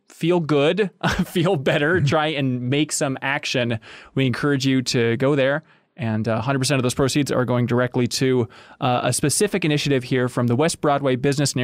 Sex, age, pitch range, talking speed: male, 20-39, 125-155 Hz, 185 wpm